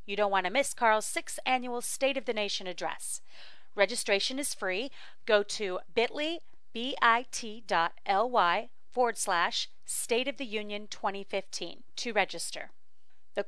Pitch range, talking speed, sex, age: 190-250 Hz, 135 wpm, female, 30-49